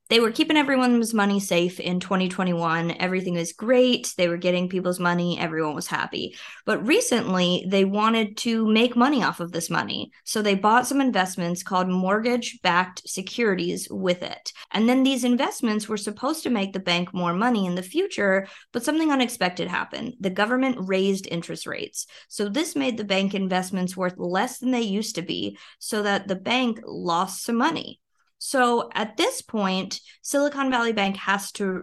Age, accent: 20-39, American